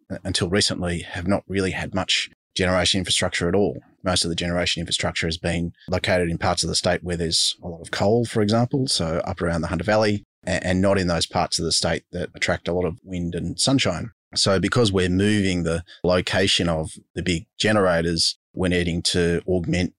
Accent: Australian